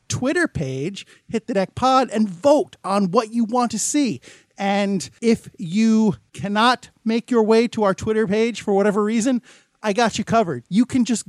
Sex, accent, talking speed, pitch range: male, American, 185 wpm, 185-235 Hz